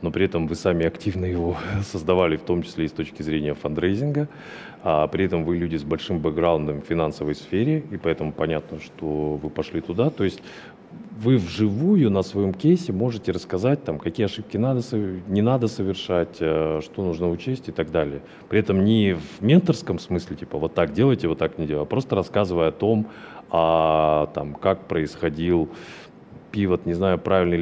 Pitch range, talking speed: 80-110 Hz, 180 wpm